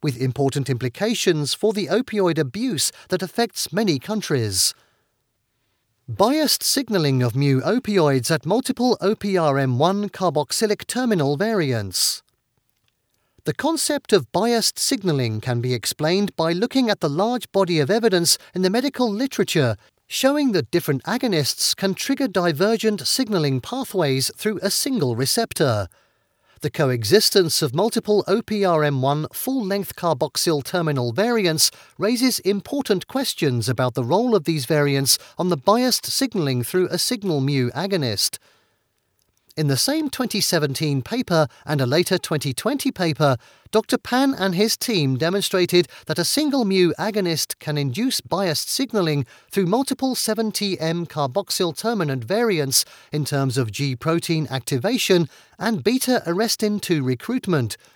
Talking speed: 125 wpm